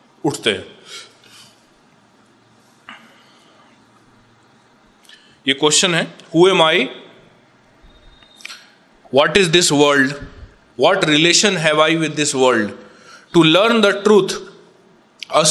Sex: male